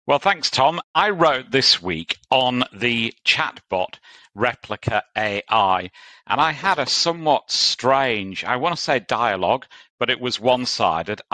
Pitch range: 100-125 Hz